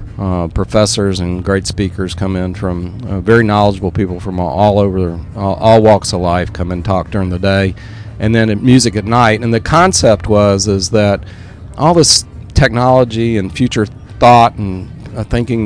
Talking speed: 180 wpm